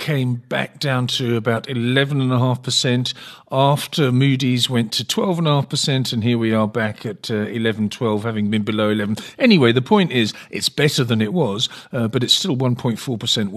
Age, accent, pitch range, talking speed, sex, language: 50-69, British, 105-125 Hz, 170 wpm, male, English